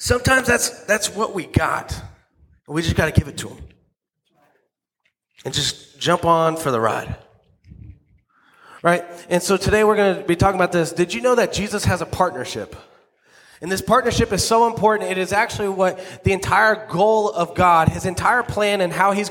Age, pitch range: 30-49, 160-215 Hz